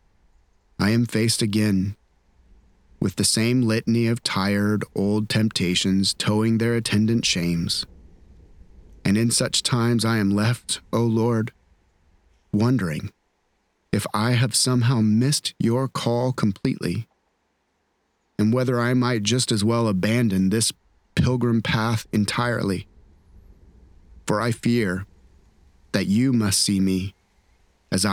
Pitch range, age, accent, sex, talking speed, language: 90-120 Hz, 30-49, American, male, 115 wpm, English